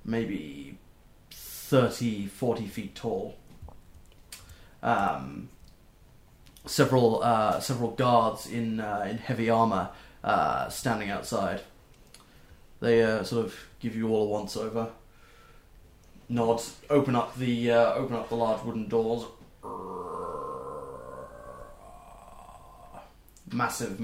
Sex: male